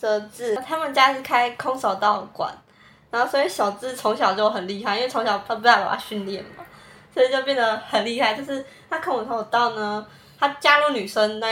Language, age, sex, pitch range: Chinese, 20-39, female, 215-275 Hz